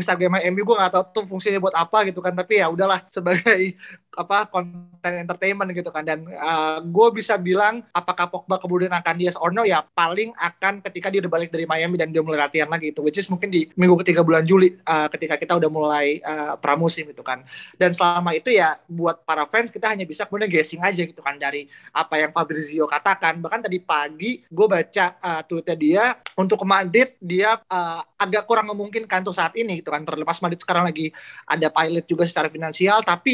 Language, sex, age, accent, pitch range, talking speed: Indonesian, male, 20-39, native, 165-200 Hz, 205 wpm